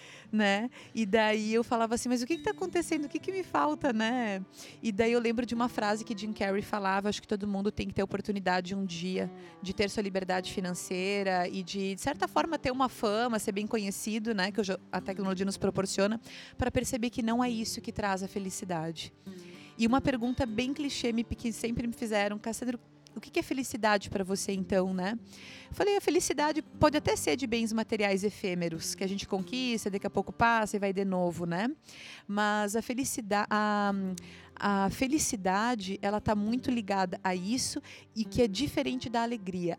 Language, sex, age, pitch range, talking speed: Portuguese, female, 30-49, 195-255 Hz, 195 wpm